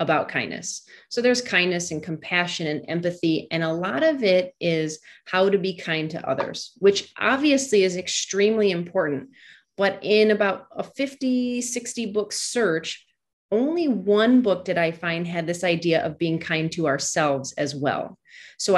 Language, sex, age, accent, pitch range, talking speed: English, female, 30-49, American, 170-220 Hz, 165 wpm